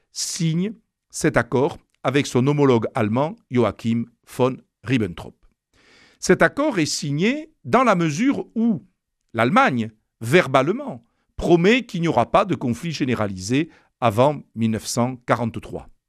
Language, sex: French, male